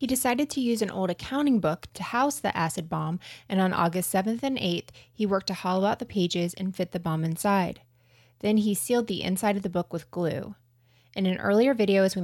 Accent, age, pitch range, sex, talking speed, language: American, 20-39, 160-210 Hz, female, 230 wpm, English